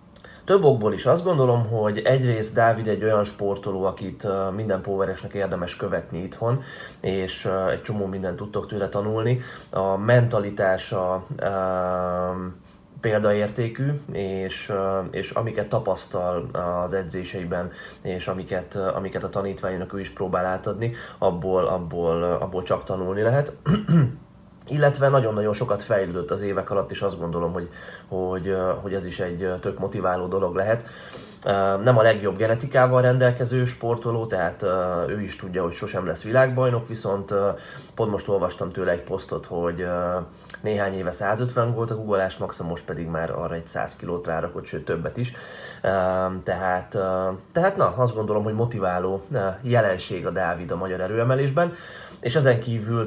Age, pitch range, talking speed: 30-49, 95-120 Hz, 140 wpm